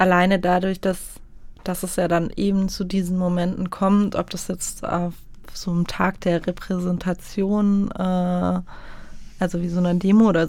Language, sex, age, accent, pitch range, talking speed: German, female, 20-39, German, 175-195 Hz, 160 wpm